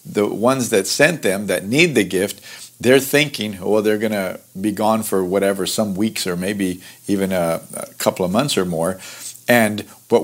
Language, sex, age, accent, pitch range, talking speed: English, male, 50-69, American, 100-120 Hz, 190 wpm